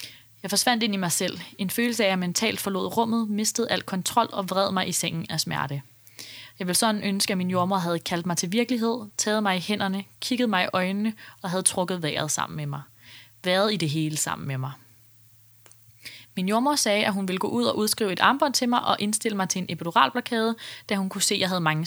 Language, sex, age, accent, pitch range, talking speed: Danish, female, 20-39, native, 155-220 Hz, 235 wpm